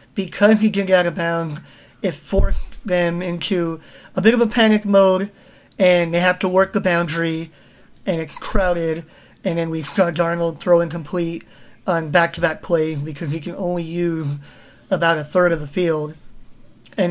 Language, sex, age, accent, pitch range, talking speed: English, male, 30-49, American, 160-200 Hz, 170 wpm